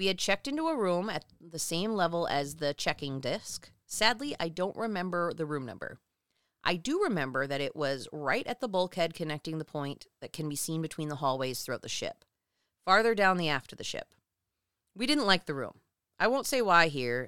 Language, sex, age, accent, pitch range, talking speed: English, female, 30-49, American, 145-195 Hz, 210 wpm